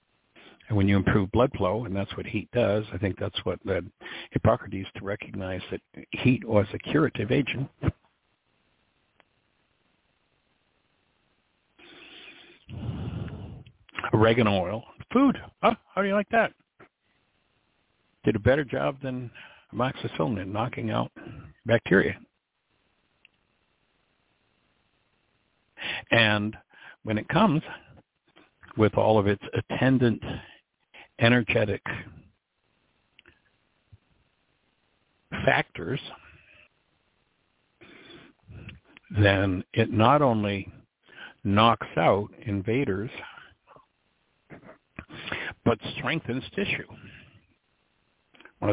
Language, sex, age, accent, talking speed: English, male, 60-79, American, 80 wpm